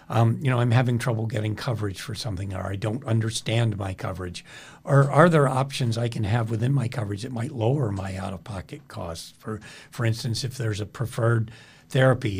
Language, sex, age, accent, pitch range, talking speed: English, male, 50-69, American, 110-130 Hz, 195 wpm